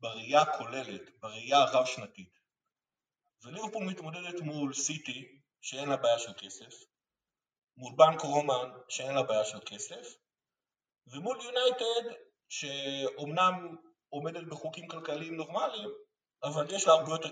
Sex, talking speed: male, 120 wpm